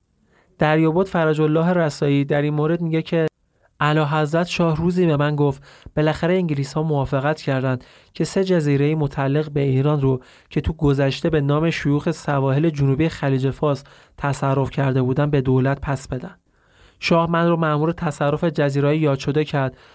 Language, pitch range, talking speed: Persian, 140-165 Hz, 160 wpm